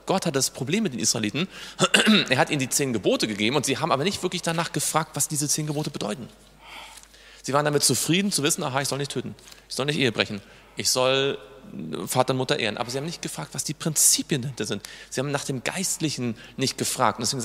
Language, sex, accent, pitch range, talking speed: German, male, German, 120-150 Hz, 235 wpm